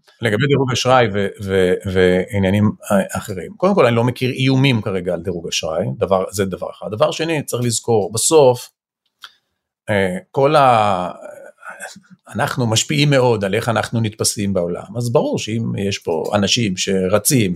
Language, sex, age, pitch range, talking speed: Hebrew, male, 40-59, 105-150 Hz, 135 wpm